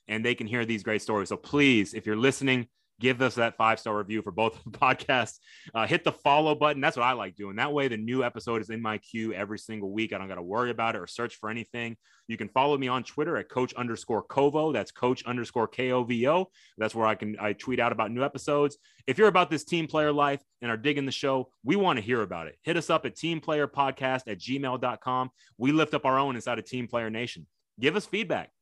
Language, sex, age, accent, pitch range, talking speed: English, male, 30-49, American, 110-140 Hz, 245 wpm